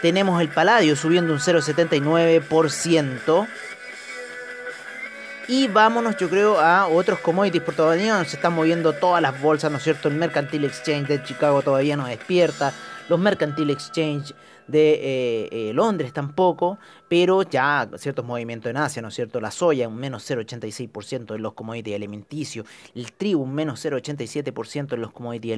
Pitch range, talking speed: 130-170 Hz, 155 wpm